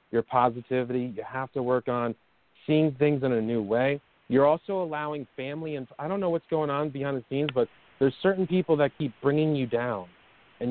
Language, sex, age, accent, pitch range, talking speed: English, male, 30-49, American, 120-150 Hz, 205 wpm